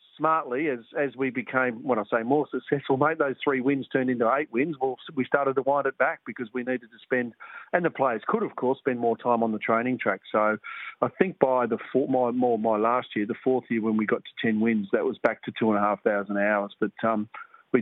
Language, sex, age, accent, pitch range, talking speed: English, male, 40-59, Australian, 115-135 Hz, 255 wpm